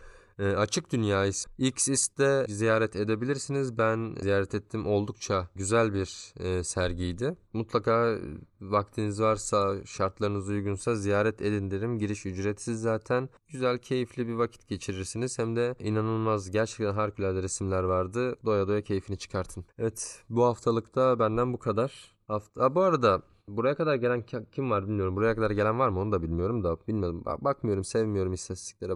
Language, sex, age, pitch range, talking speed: Turkish, male, 20-39, 100-120 Hz, 145 wpm